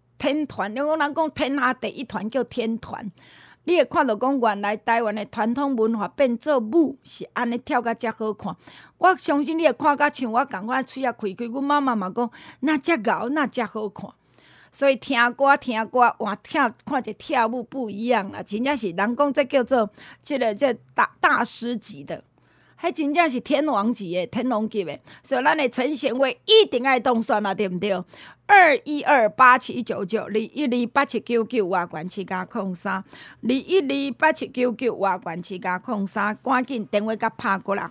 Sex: female